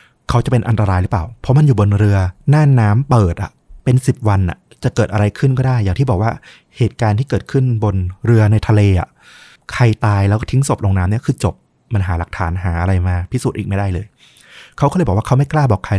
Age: 20-39